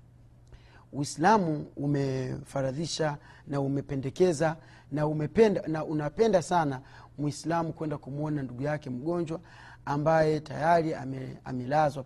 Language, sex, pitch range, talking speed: Swahili, male, 135-165 Hz, 90 wpm